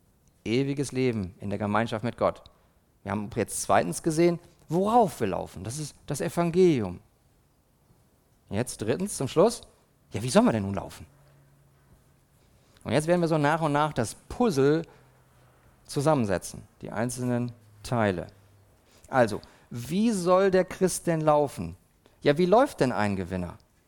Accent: German